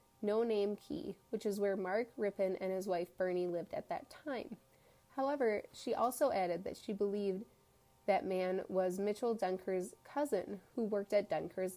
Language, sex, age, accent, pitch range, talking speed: English, female, 20-39, American, 185-235 Hz, 170 wpm